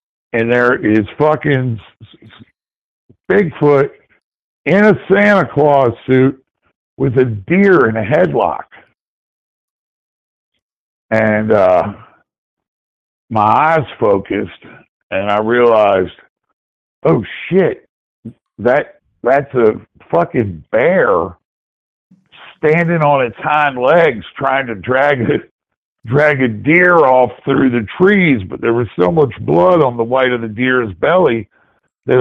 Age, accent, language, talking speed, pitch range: 60-79, American, English, 115 wpm, 125-175 Hz